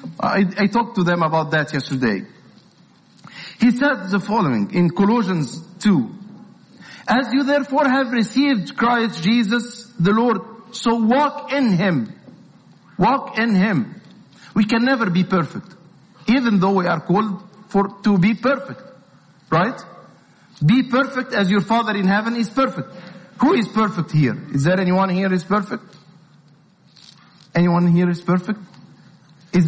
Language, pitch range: English, 175-220 Hz